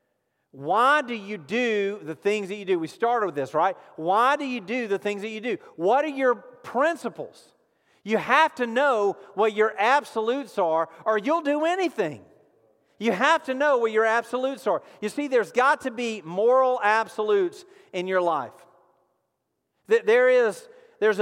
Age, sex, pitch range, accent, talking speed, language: 40-59, male, 185-255 Hz, American, 165 wpm, English